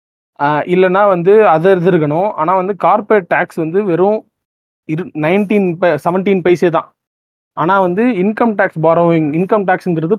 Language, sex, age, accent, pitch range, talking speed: Tamil, male, 30-49, native, 155-200 Hz, 125 wpm